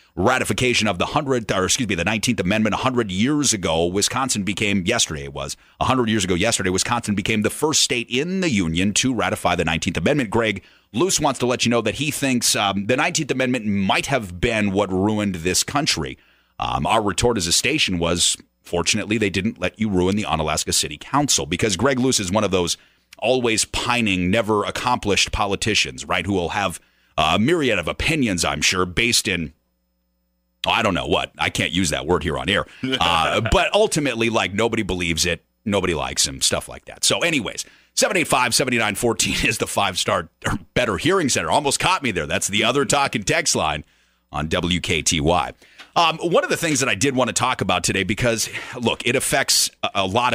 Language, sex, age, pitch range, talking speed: English, male, 30-49, 90-120 Hz, 195 wpm